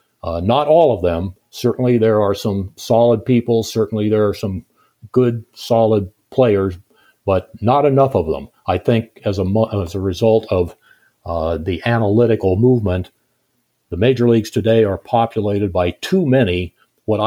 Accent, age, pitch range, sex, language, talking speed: American, 60-79, 95-120 Hz, male, English, 155 wpm